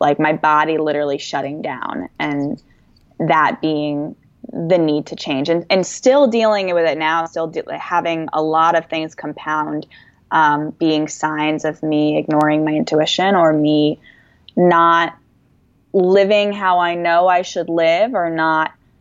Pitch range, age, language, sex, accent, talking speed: 155-180 Hz, 10-29, English, female, American, 150 wpm